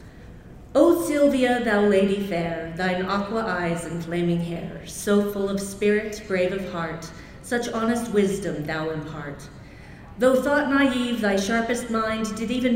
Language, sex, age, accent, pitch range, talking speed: English, female, 40-59, American, 175-235 Hz, 145 wpm